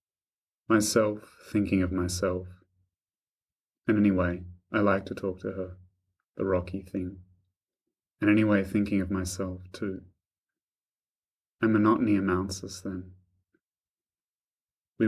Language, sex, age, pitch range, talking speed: English, male, 30-49, 90-100 Hz, 110 wpm